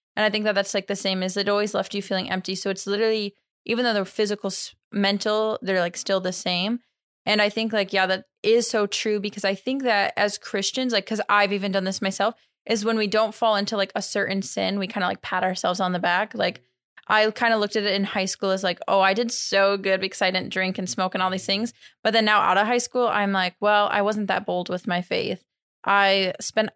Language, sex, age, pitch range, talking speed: English, female, 20-39, 190-215 Hz, 260 wpm